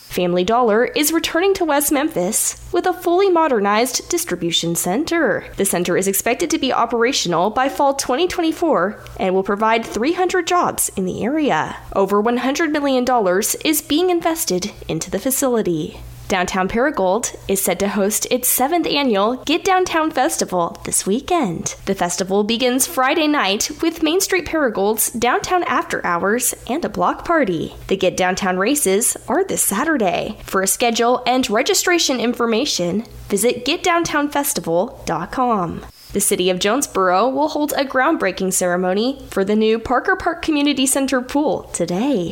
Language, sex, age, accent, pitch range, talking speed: English, female, 10-29, American, 190-295 Hz, 145 wpm